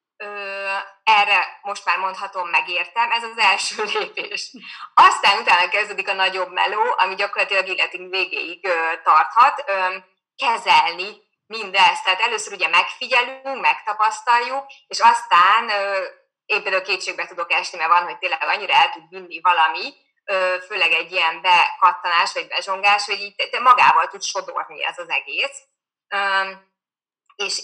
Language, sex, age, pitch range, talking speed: Hungarian, female, 20-39, 175-230 Hz, 140 wpm